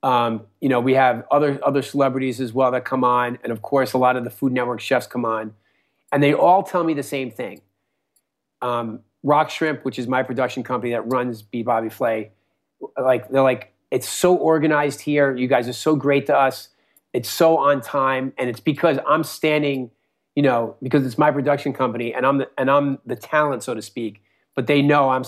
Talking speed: 215 wpm